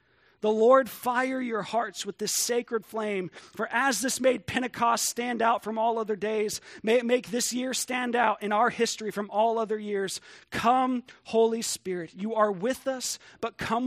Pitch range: 155-215 Hz